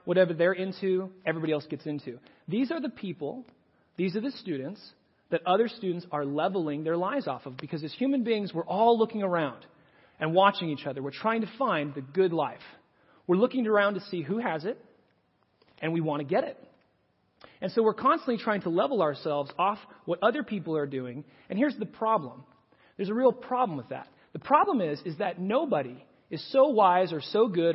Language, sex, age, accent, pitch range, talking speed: English, male, 30-49, American, 155-225 Hz, 200 wpm